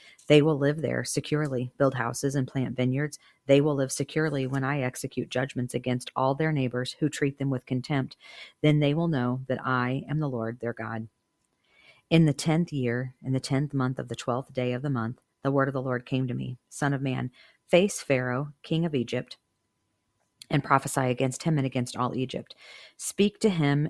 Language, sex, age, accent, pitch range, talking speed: English, female, 40-59, American, 125-140 Hz, 200 wpm